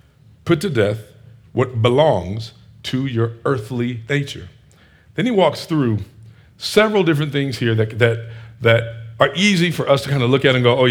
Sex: male